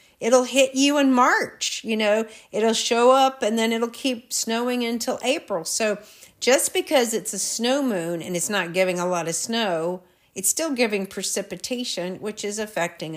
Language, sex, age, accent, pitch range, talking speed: English, female, 50-69, American, 185-230 Hz, 180 wpm